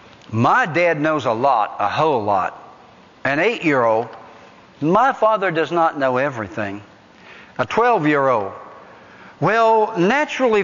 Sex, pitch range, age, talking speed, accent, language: male, 120-185 Hz, 60-79, 115 wpm, American, English